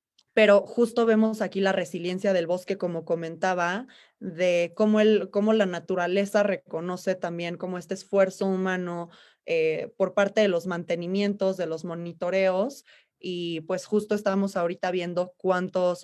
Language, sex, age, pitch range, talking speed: Spanish, female, 20-39, 180-200 Hz, 140 wpm